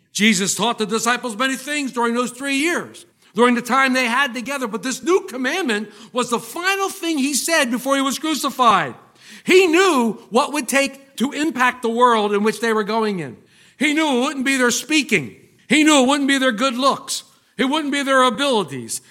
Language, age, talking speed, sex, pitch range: English, 60-79, 205 wpm, male, 215-290 Hz